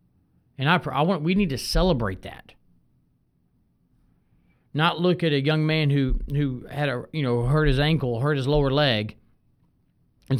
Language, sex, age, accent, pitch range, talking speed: English, male, 40-59, American, 120-170 Hz, 165 wpm